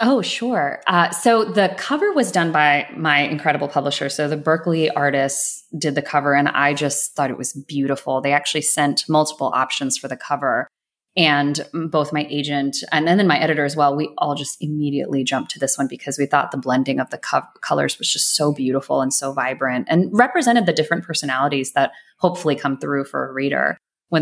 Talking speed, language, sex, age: 200 wpm, English, female, 20-39